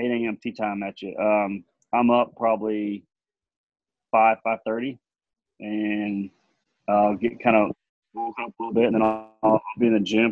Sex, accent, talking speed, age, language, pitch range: male, American, 175 wpm, 30-49, English, 100-110 Hz